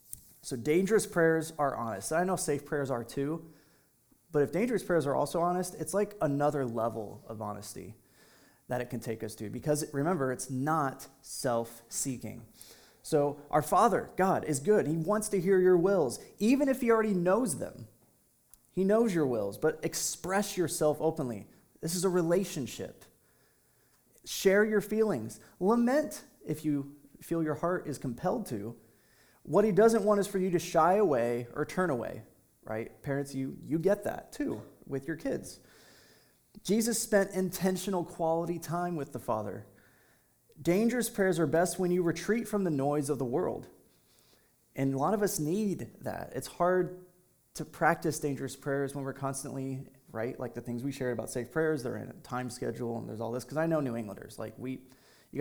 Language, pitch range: English, 130-180 Hz